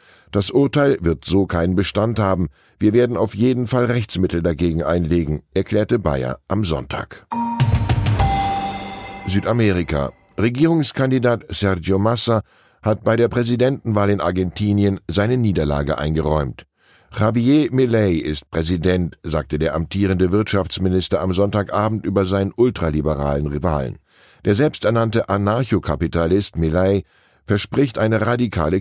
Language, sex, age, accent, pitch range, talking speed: German, male, 10-29, German, 85-115 Hz, 110 wpm